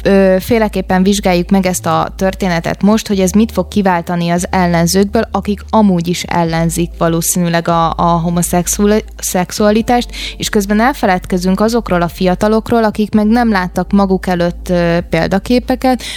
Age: 20-39